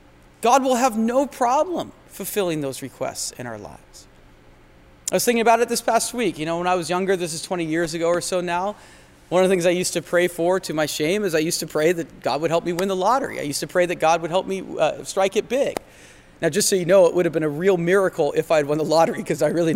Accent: American